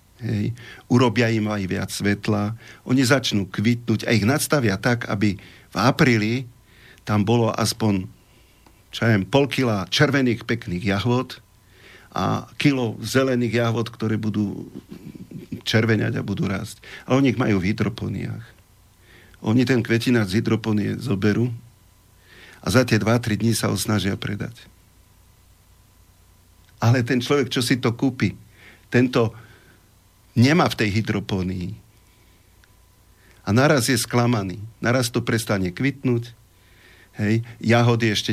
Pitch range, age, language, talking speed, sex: 100-120 Hz, 50-69, Slovak, 120 wpm, male